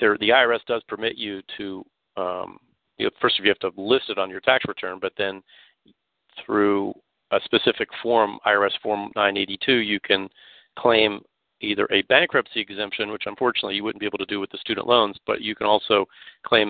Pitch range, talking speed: 100-120 Hz, 195 wpm